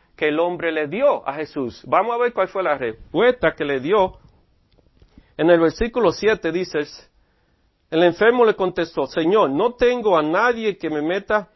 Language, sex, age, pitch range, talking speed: English, male, 40-59, 150-215 Hz, 175 wpm